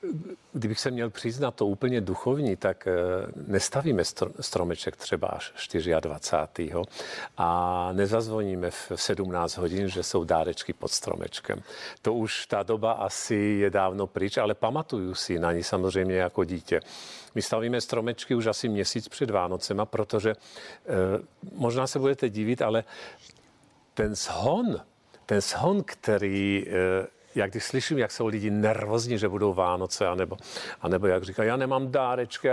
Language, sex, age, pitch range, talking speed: Czech, male, 50-69, 95-115 Hz, 140 wpm